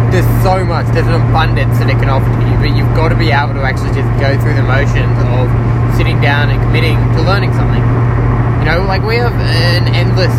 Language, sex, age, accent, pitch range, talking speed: English, male, 20-39, Australian, 110-120 Hz, 230 wpm